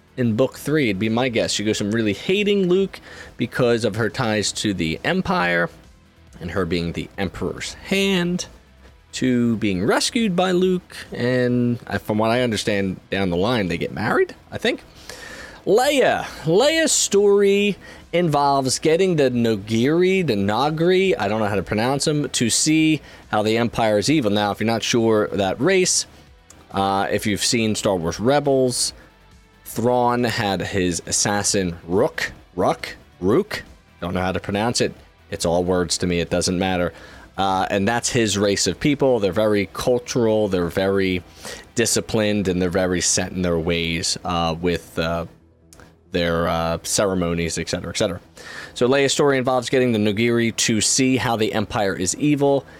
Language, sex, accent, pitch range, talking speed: English, male, American, 90-130 Hz, 165 wpm